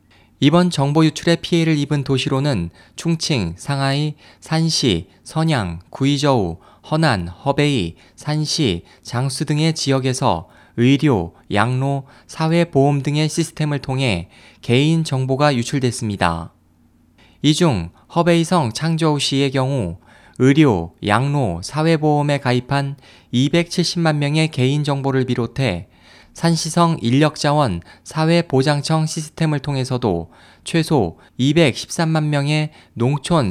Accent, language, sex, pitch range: native, Korean, male, 115-155 Hz